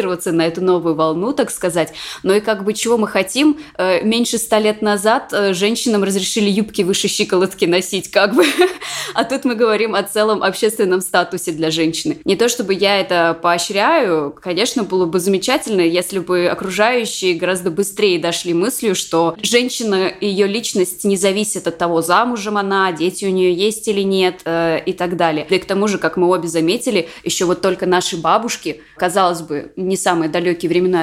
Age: 20-39